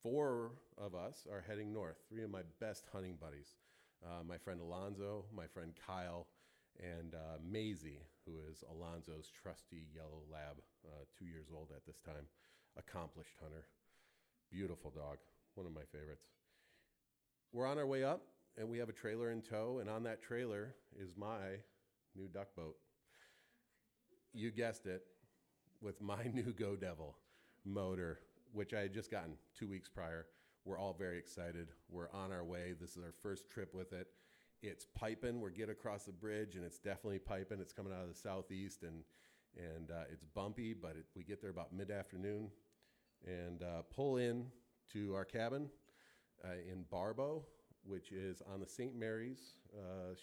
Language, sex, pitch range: English, male, 85-110 Hz